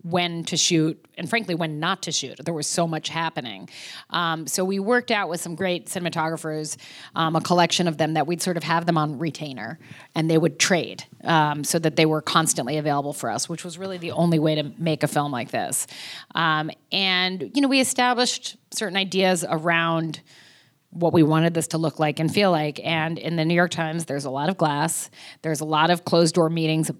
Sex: female